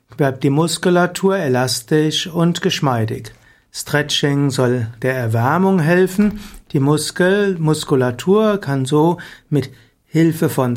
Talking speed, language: 100 wpm, German